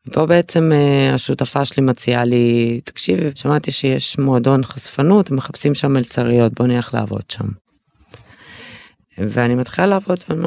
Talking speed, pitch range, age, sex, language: 140 wpm, 110-135 Hz, 20-39, female, Hebrew